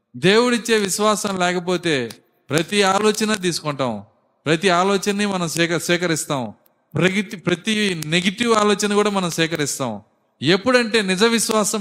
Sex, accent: male, native